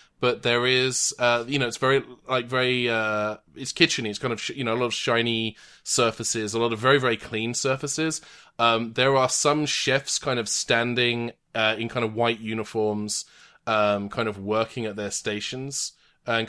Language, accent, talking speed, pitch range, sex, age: English, British, 195 wpm, 110-135 Hz, male, 20-39